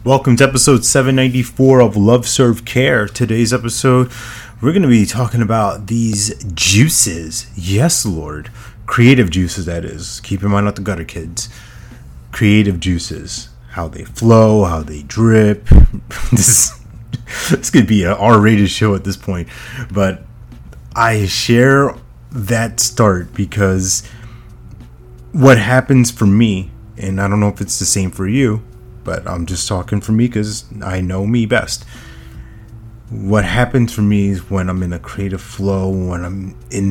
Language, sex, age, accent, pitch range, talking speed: English, male, 30-49, American, 95-115 Hz, 155 wpm